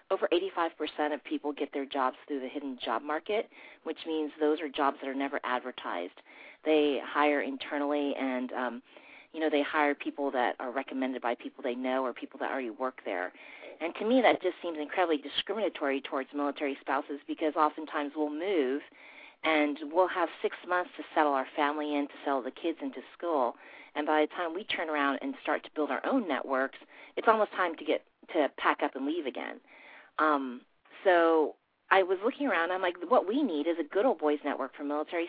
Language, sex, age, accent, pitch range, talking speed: English, female, 40-59, American, 140-170 Hz, 205 wpm